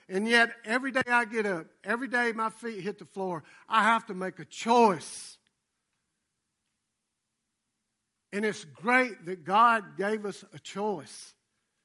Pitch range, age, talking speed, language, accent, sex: 180-235 Hz, 60-79, 145 wpm, English, American, male